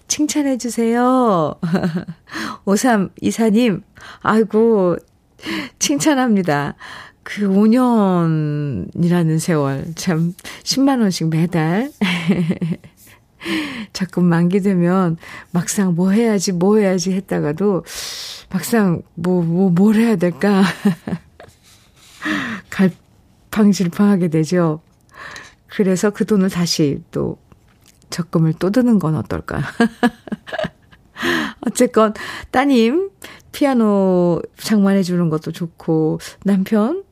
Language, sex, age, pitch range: Korean, female, 40-59, 175-220 Hz